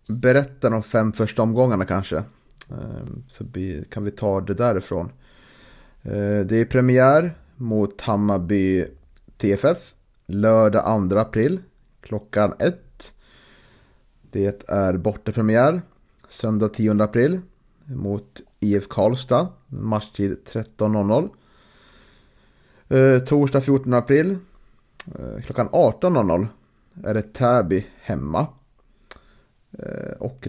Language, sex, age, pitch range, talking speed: Swedish, male, 30-49, 105-130 Hz, 85 wpm